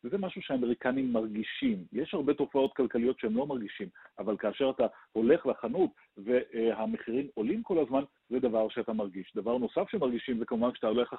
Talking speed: 160 wpm